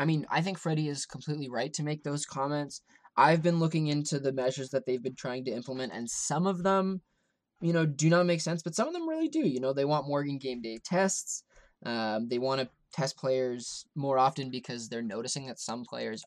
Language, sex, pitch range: English, male, 125-170 Hz